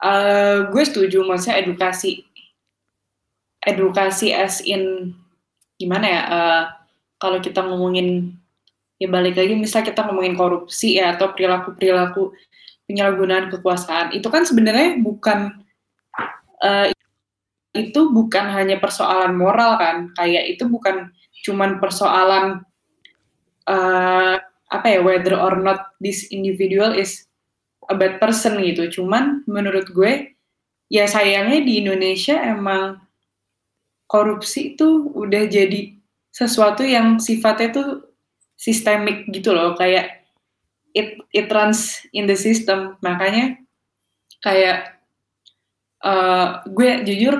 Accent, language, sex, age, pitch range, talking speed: native, Indonesian, female, 10-29, 185-210 Hz, 110 wpm